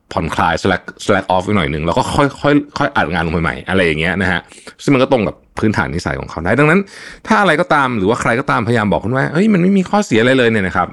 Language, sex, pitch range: Thai, male, 95-145 Hz